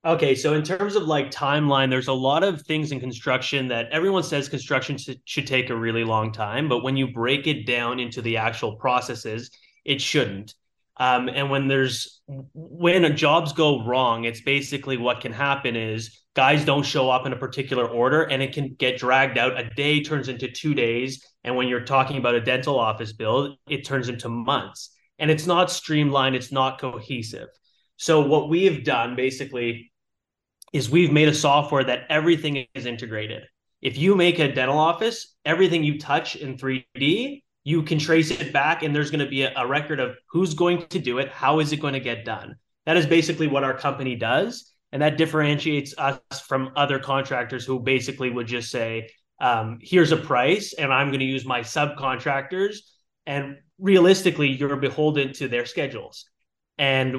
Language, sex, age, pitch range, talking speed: English, male, 30-49, 125-150 Hz, 190 wpm